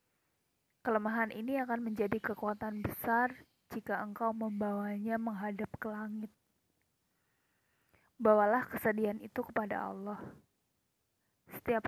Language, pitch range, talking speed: Indonesian, 205-230 Hz, 90 wpm